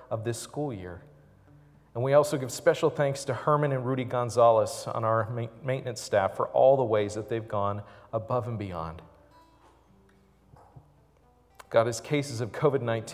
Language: English